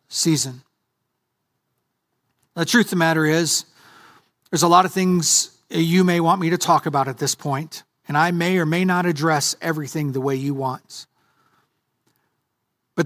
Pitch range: 150-185 Hz